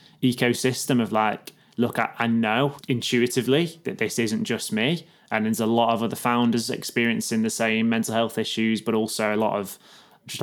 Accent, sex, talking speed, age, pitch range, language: British, male, 185 wpm, 20-39, 110-130 Hz, English